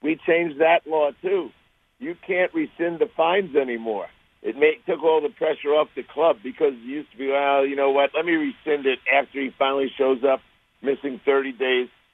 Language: English